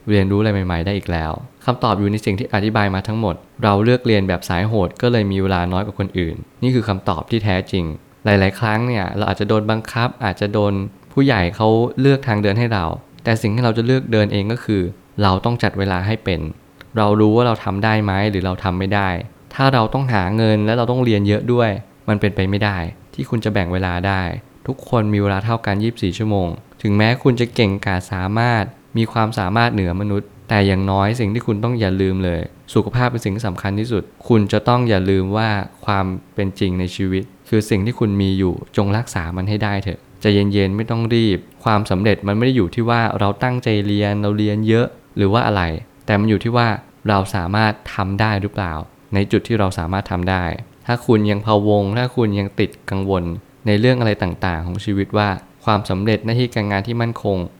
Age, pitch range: 20-39, 95-115 Hz